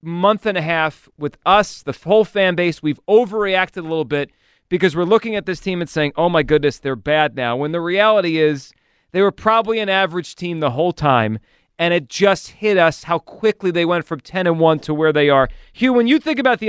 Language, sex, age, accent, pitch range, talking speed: English, male, 30-49, American, 150-190 Hz, 230 wpm